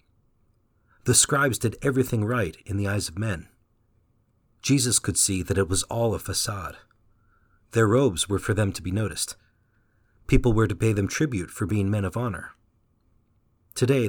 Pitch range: 100-120 Hz